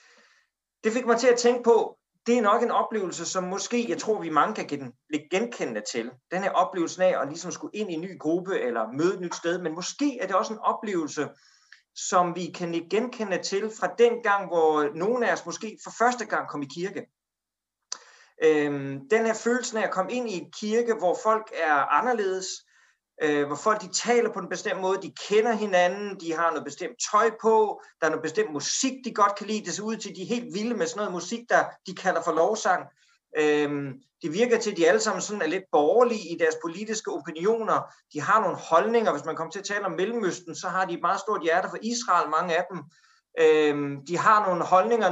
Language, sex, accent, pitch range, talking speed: Danish, male, native, 170-225 Hz, 220 wpm